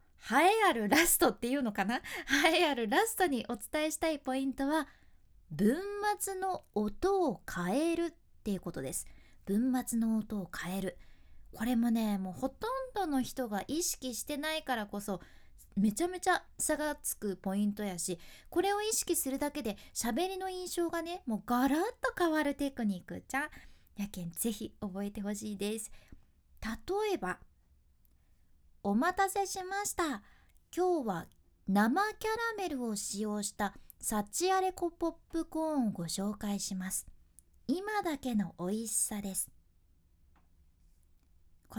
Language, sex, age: Japanese, female, 20-39